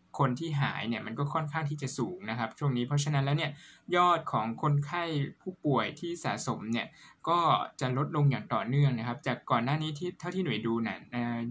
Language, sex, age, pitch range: Thai, male, 20-39, 120-150 Hz